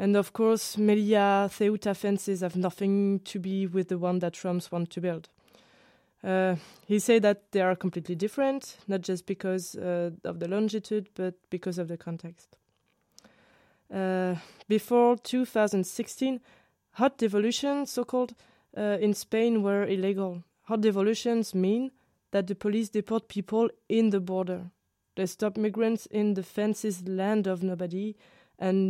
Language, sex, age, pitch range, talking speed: German, female, 20-39, 185-210 Hz, 145 wpm